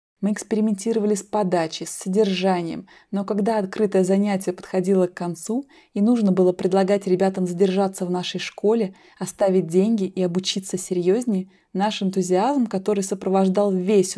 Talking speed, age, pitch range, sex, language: 135 wpm, 20-39, 185-210 Hz, female, Russian